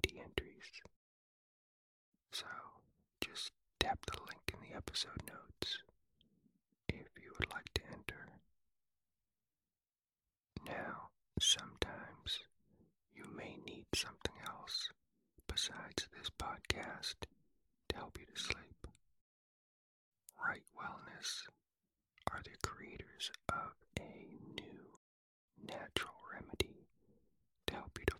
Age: 40-59